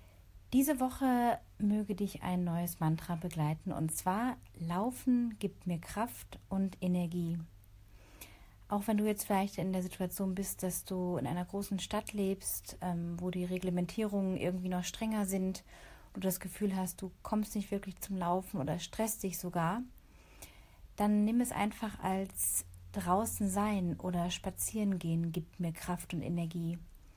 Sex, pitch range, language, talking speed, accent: female, 175-210 Hz, German, 155 wpm, German